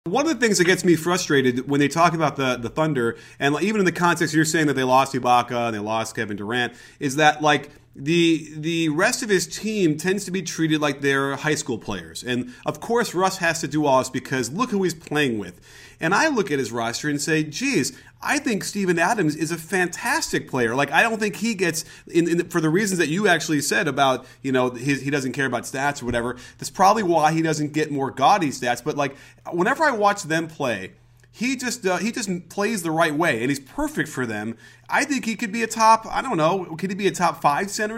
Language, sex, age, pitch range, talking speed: English, male, 30-49, 135-185 Hz, 245 wpm